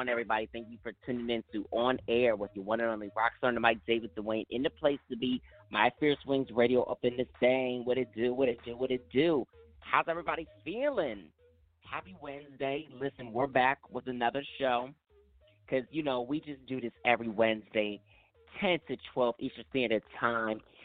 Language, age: English, 30-49